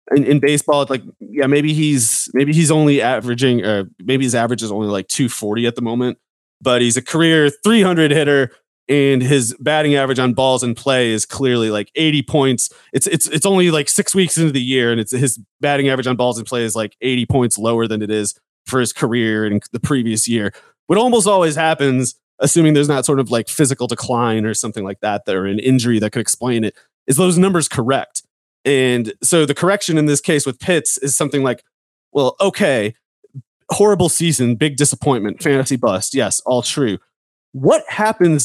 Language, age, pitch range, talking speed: English, 30-49, 120-155 Hz, 200 wpm